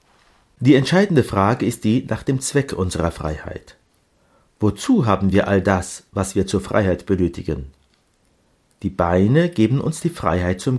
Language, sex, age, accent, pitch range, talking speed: German, male, 50-69, German, 90-130 Hz, 150 wpm